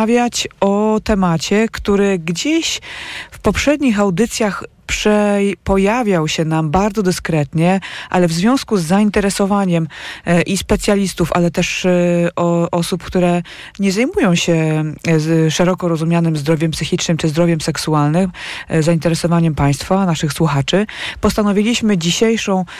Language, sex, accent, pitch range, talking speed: Polish, female, native, 155-195 Hz, 105 wpm